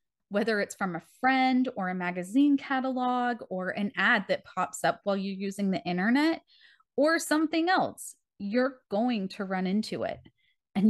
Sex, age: female, 20-39